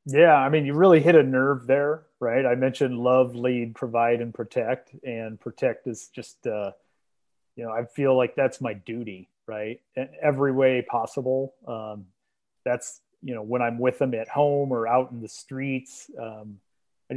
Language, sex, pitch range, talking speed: English, male, 115-135 Hz, 180 wpm